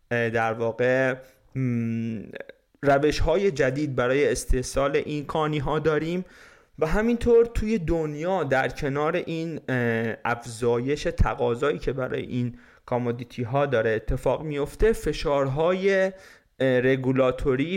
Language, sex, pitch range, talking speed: Persian, male, 125-165 Hz, 100 wpm